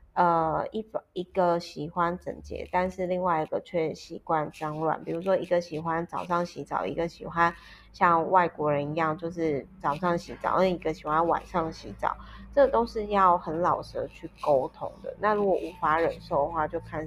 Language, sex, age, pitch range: Chinese, female, 30-49, 155-185 Hz